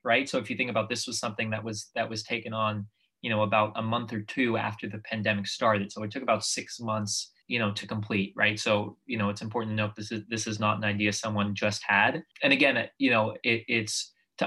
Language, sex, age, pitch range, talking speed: English, male, 20-39, 105-115 Hz, 255 wpm